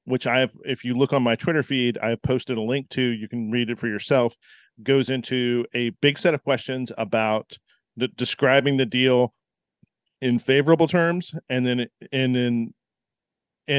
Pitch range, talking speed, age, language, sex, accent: 115-135 Hz, 175 wpm, 40-59, English, male, American